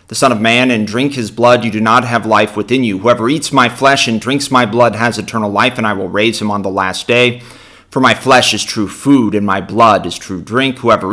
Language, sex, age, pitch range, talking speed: English, male, 30-49, 105-125 Hz, 260 wpm